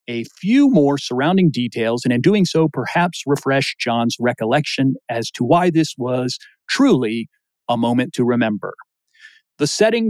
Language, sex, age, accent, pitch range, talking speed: English, male, 40-59, American, 115-165 Hz, 150 wpm